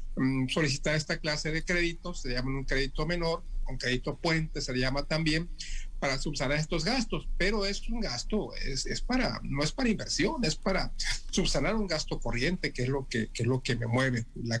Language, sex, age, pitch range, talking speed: Spanish, male, 50-69, 135-190 Hz, 210 wpm